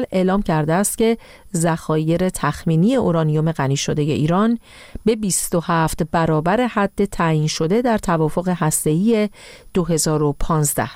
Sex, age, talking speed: female, 40-59, 110 wpm